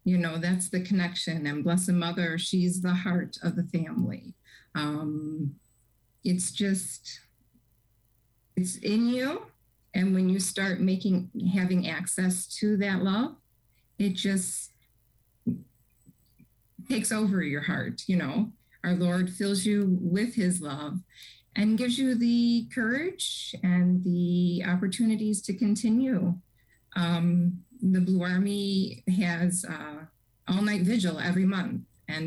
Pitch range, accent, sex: 170-210 Hz, American, female